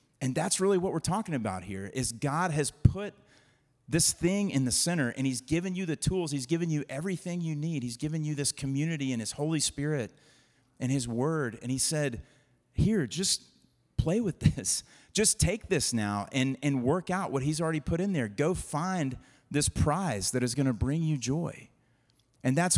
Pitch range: 125-160 Hz